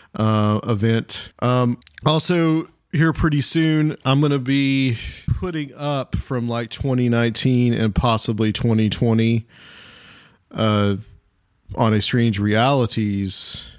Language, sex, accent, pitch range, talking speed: English, male, American, 100-120 Hz, 105 wpm